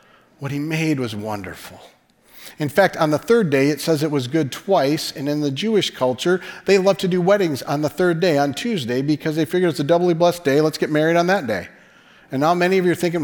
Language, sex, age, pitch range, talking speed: English, male, 40-59, 150-185 Hz, 245 wpm